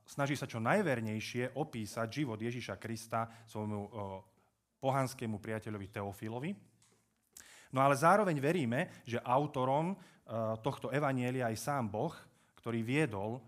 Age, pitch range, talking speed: 30-49, 110-140 Hz, 110 wpm